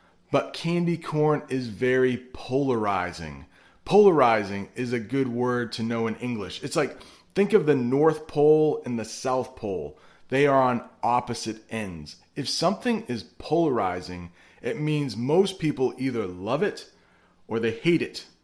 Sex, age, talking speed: male, 30-49, 150 wpm